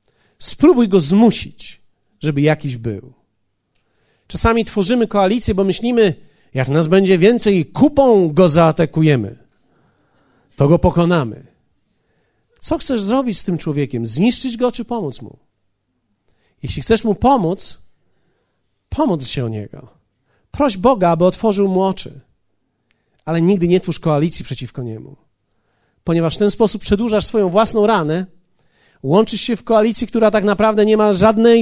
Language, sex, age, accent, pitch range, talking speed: Polish, male, 40-59, native, 135-215 Hz, 135 wpm